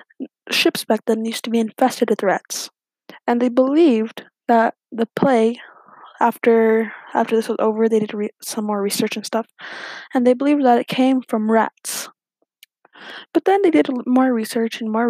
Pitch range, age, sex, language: 225-275 Hz, 10-29, female, English